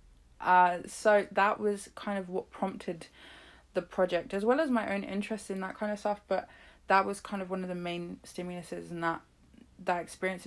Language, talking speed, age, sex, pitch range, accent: English, 200 wpm, 20-39, female, 165-210 Hz, British